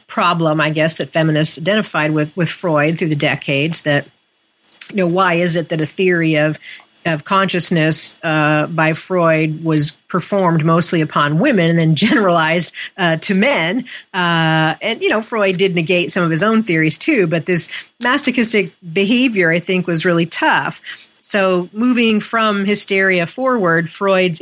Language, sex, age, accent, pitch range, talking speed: English, female, 40-59, American, 160-200 Hz, 160 wpm